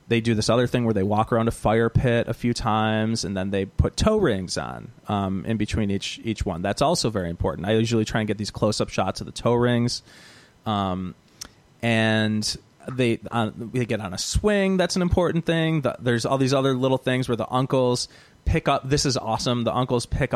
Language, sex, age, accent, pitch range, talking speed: English, male, 30-49, American, 110-130 Hz, 220 wpm